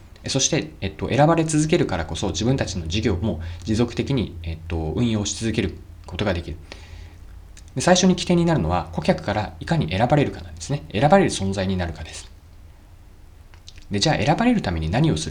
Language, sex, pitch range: Japanese, male, 85-130 Hz